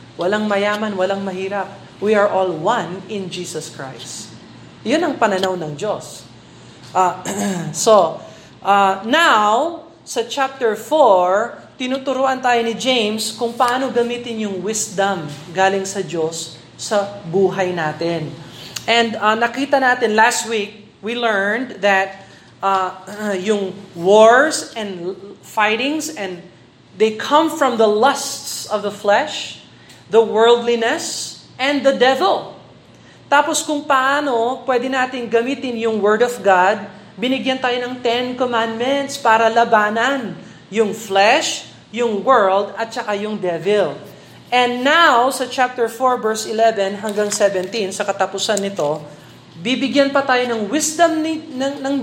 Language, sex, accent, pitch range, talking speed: Filipino, male, native, 195-245 Hz, 125 wpm